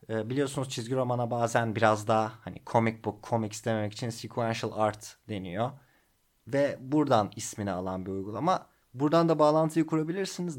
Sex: male